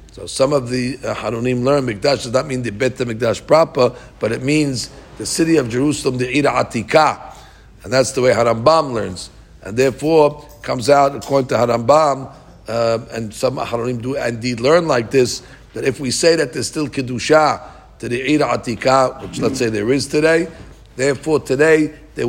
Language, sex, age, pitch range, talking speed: English, male, 50-69, 115-135 Hz, 190 wpm